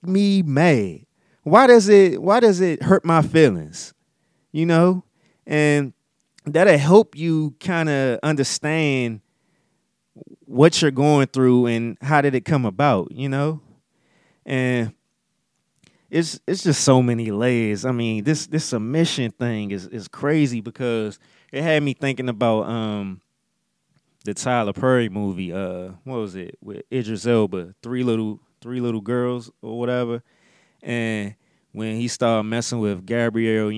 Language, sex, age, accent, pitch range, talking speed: English, male, 30-49, American, 115-155 Hz, 140 wpm